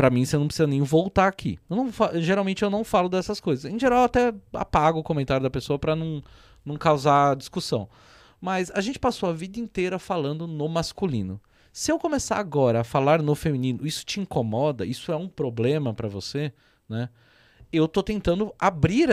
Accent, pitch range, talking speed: Brazilian, 135-200 Hz, 200 wpm